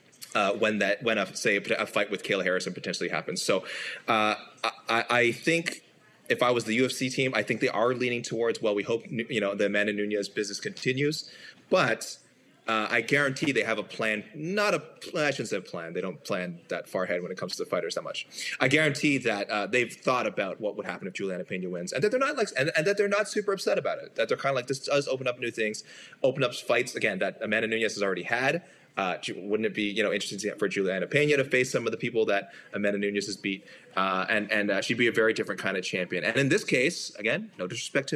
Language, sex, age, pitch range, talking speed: English, male, 20-39, 100-135 Hz, 250 wpm